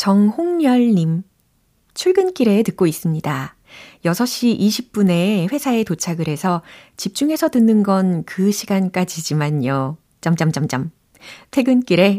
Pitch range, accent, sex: 155-235 Hz, native, female